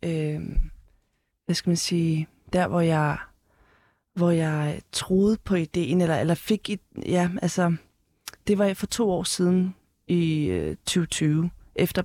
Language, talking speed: Danish, 145 wpm